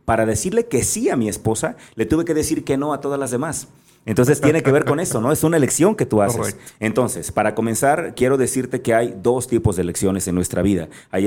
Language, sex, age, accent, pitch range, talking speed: Spanish, male, 30-49, Mexican, 100-130 Hz, 240 wpm